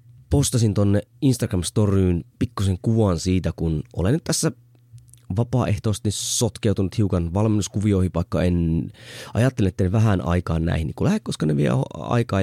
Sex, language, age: male, Finnish, 20-39